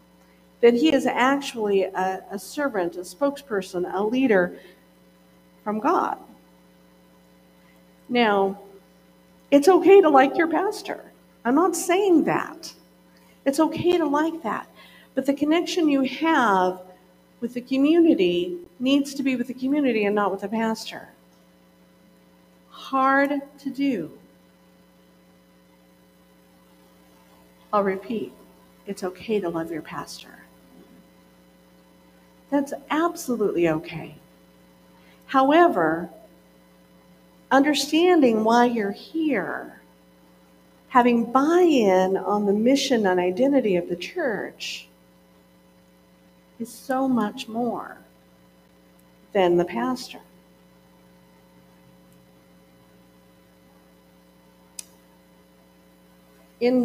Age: 50-69